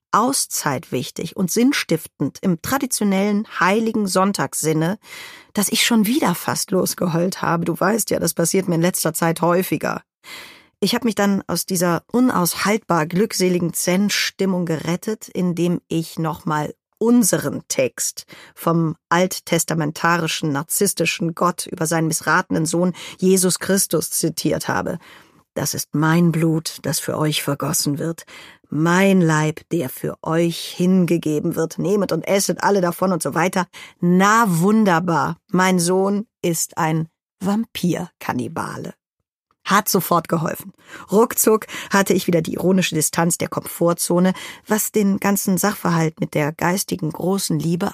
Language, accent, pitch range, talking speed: German, German, 165-195 Hz, 130 wpm